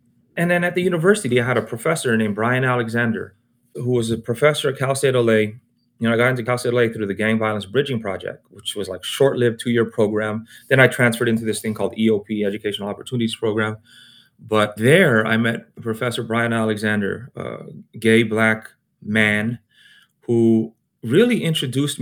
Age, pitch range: 30-49, 110-140 Hz